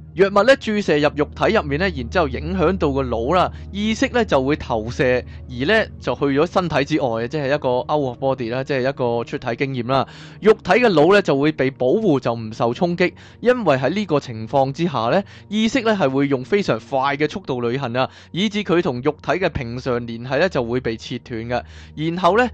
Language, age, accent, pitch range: Chinese, 20-39, native, 125-180 Hz